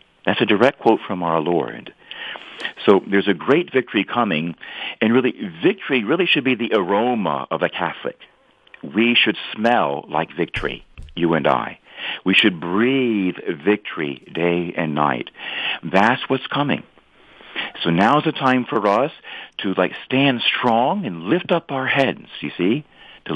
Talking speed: 155 wpm